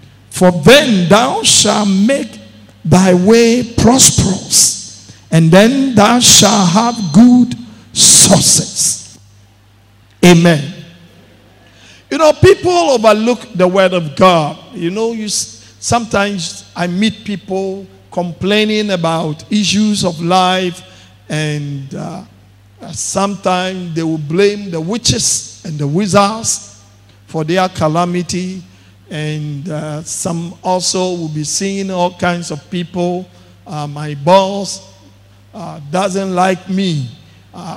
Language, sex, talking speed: English, male, 110 wpm